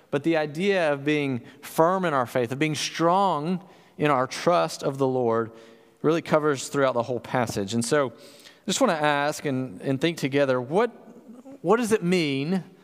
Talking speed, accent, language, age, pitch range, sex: 185 wpm, American, English, 40-59, 140-190 Hz, male